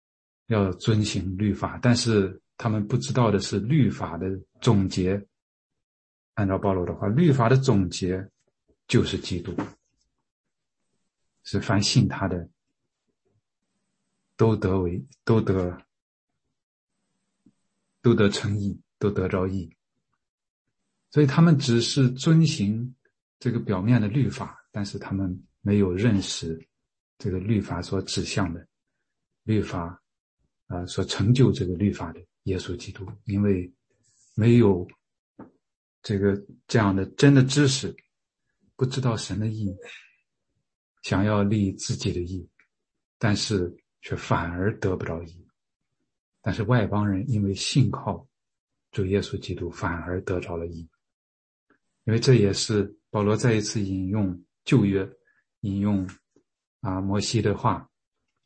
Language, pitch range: English, 95-115 Hz